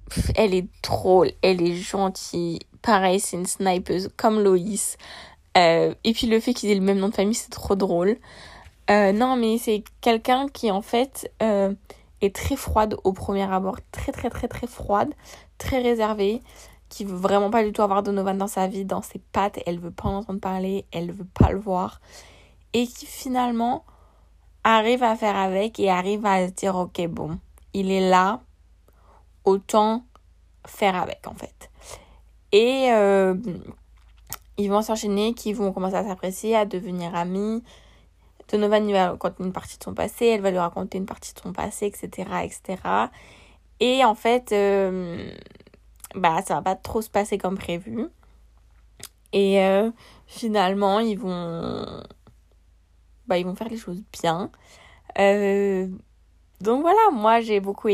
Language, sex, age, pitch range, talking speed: French, female, 20-39, 185-220 Hz, 170 wpm